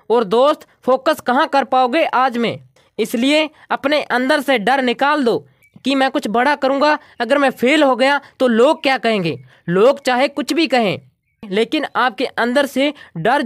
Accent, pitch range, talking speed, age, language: native, 235-285 Hz, 175 wpm, 20-39, Hindi